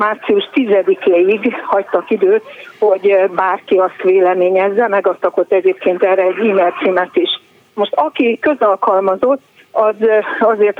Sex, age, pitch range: female, 50-69, 190-245 Hz